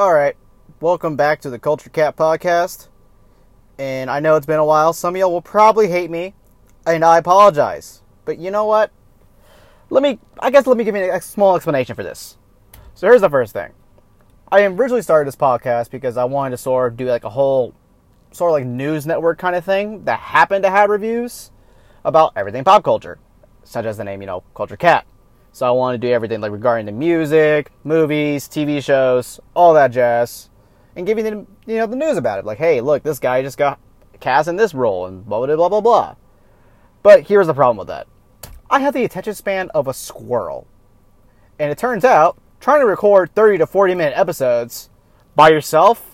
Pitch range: 125-195 Hz